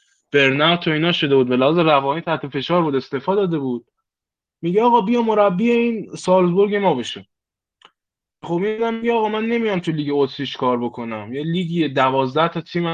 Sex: male